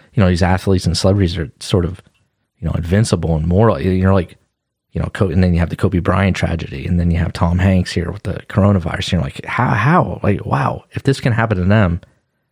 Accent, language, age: American, English, 30-49